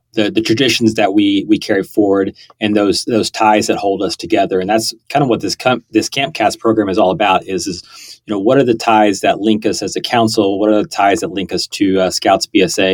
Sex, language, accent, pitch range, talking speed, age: male, English, American, 100-120 Hz, 250 wpm, 30-49